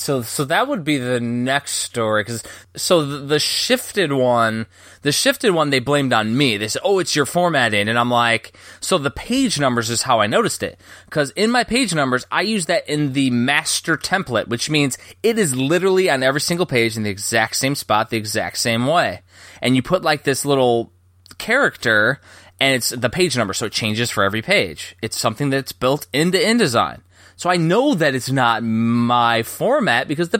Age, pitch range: 20-39, 110-150 Hz